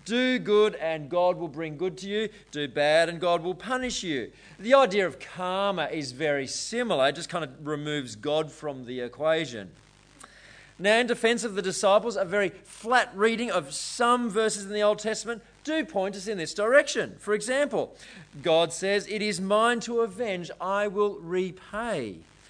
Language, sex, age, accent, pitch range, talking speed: English, male, 30-49, Australian, 155-210 Hz, 180 wpm